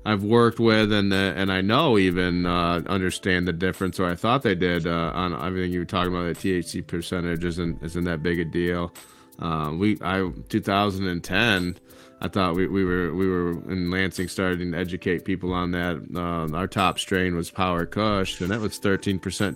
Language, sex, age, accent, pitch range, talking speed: English, male, 30-49, American, 90-110 Hz, 205 wpm